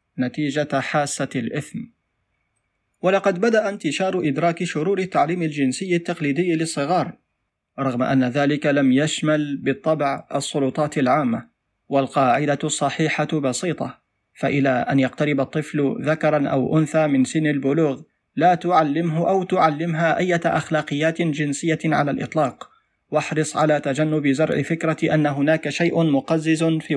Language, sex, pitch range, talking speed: Arabic, male, 145-175 Hz, 115 wpm